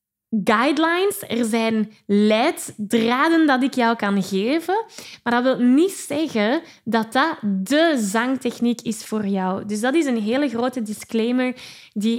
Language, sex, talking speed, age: Dutch, female, 145 wpm, 10-29